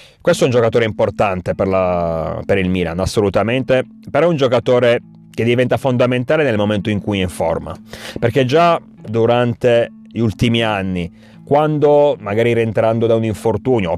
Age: 30-49